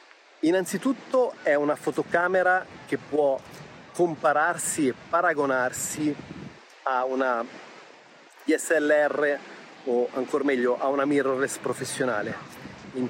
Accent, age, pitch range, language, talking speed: native, 30-49, 130-160 Hz, Italian, 90 wpm